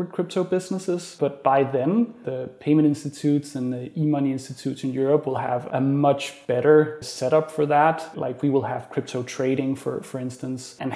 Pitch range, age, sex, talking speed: 130-155 Hz, 30-49, male, 175 wpm